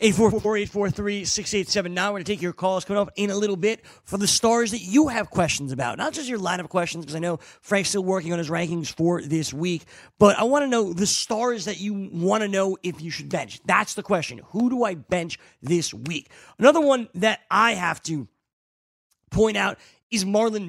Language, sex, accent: English, male, American